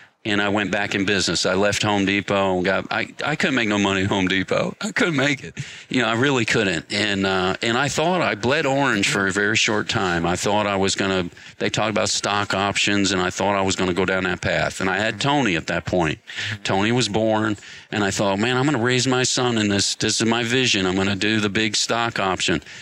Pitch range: 100-125 Hz